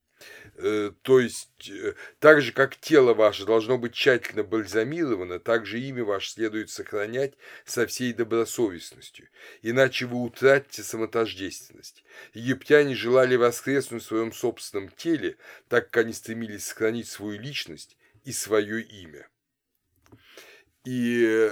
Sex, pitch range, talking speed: male, 110-135 Hz, 115 wpm